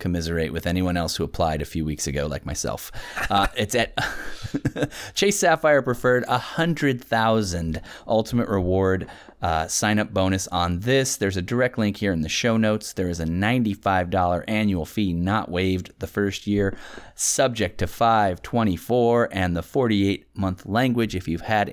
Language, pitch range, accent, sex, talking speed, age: English, 90-115 Hz, American, male, 170 wpm, 30-49